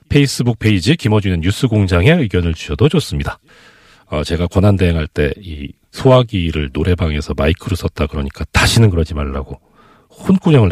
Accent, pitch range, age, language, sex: native, 85-125 Hz, 40-59, Korean, male